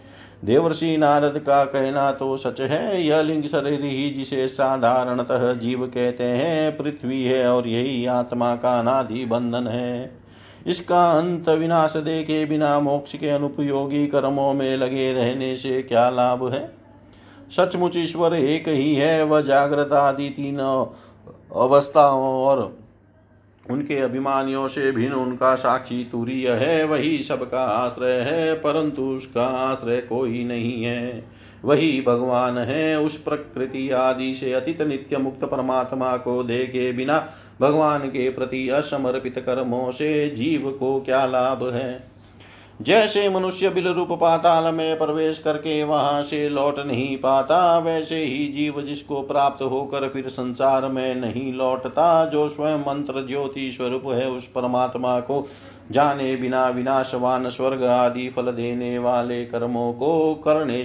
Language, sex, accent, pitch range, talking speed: Hindi, male, native, 125-145 Hz, 135 wpm